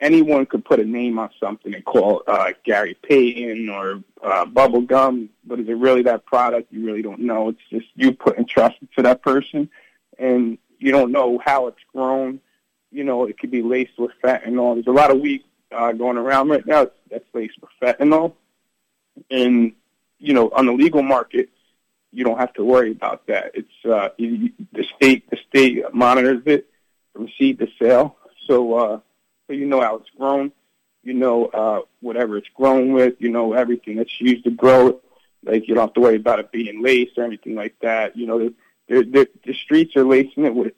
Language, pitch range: English, 115-135 Hz